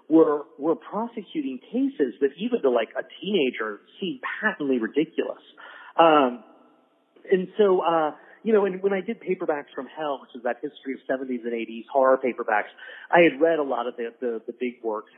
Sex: male